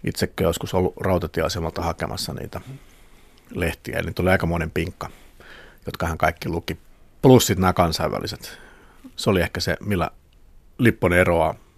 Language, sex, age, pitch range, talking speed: Finnish, male, 50-69, 85-115 Hz, 140 wpm